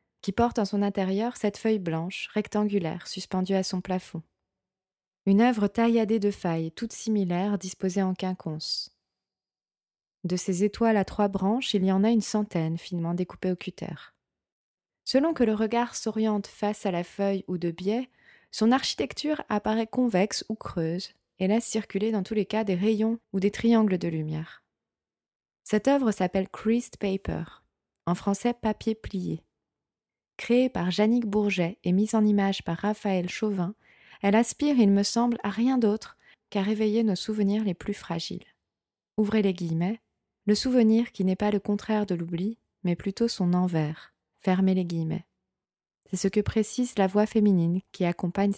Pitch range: 185-220 Hz